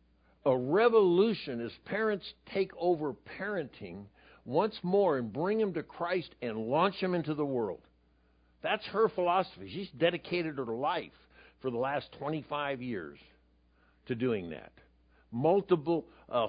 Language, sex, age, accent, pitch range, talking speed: English, male, 60-79, American, 115-180 Hz, 135 wpm